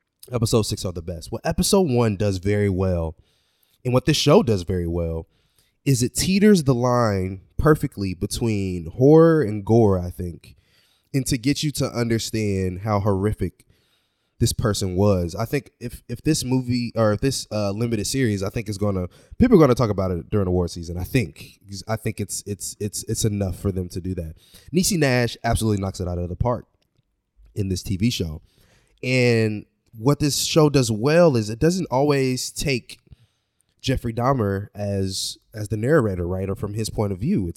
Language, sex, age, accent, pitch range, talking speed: English, male, 20-39, American, 100-145 Hz, 190 wpm